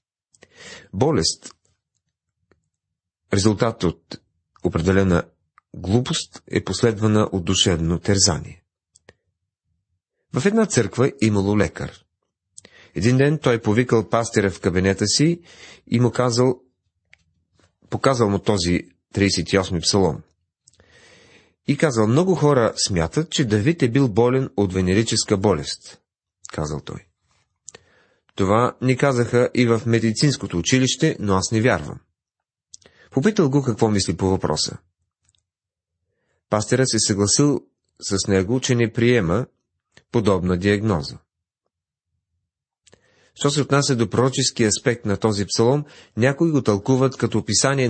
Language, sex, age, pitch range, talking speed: Bulgarian, male, 40-59, 95-130 Hz, 110 wpm